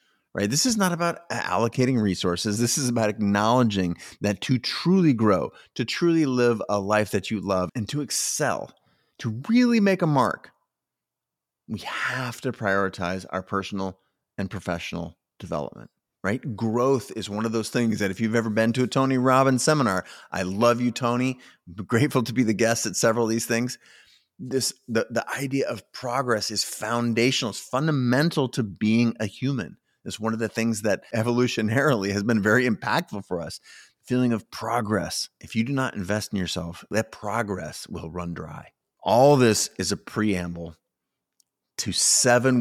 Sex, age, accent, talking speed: male, 30-49, American, 170 wpm